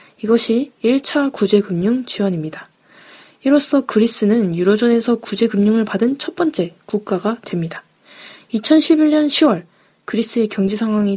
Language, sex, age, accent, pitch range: Korean, female, 20-39, native, 200-250 Hz